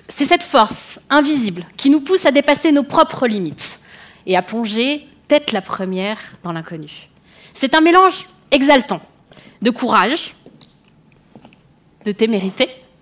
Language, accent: French, French